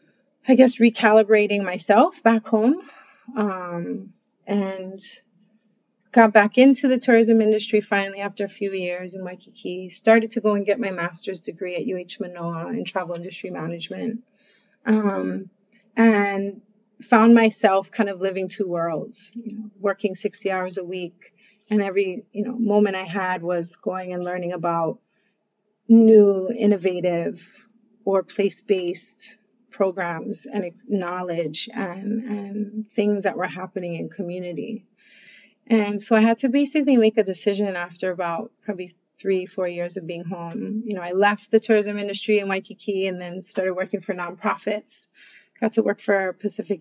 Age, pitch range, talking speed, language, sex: 30-49, 185-220 Hz, 150 wpm, English, female